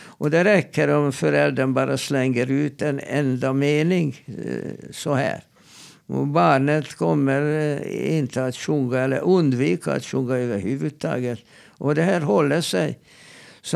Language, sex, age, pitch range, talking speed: Swedish, male, 60-79, 130-155 Hz, 130 wpm